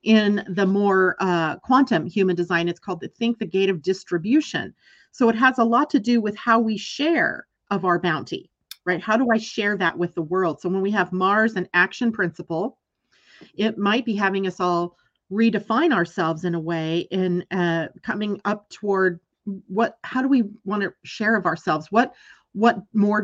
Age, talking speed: 40-59, 190 wpm